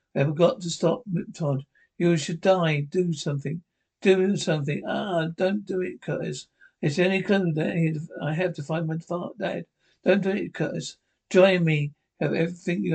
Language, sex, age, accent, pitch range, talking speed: English, male, 60-79, British, 150-180 Hz, 170 wpm